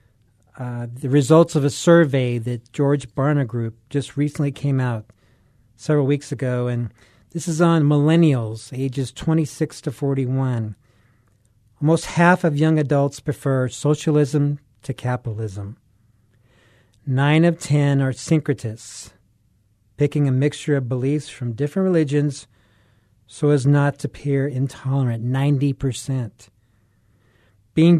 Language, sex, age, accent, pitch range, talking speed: English, male, 40-59, American, 115-150 Hz, 120 wpm